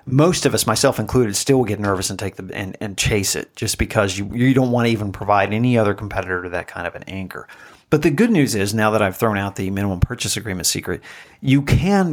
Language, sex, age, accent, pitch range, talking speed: English, male, 40-59, American, 100-135 Hz, 245 wpm